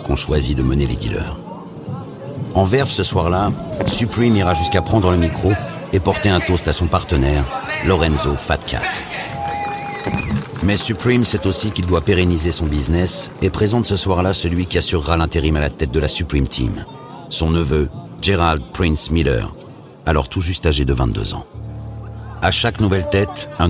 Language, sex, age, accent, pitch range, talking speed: French, male, 60-79, French, 80-105 Hz, 170 wpm